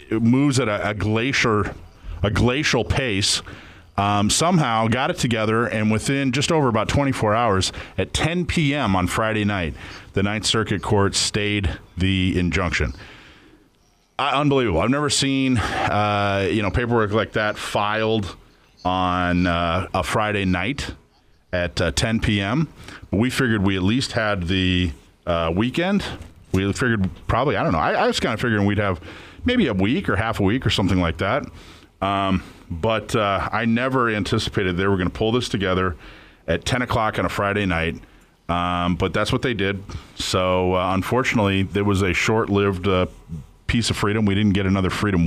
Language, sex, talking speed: English, male, 175 wpm